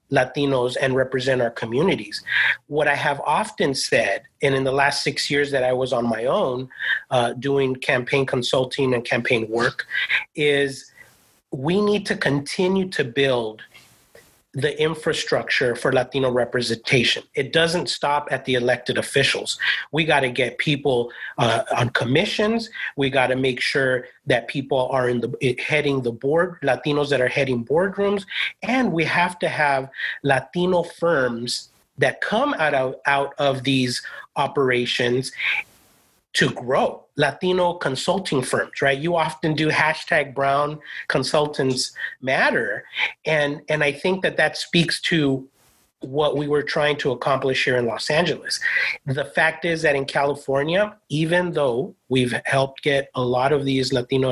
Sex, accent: male, American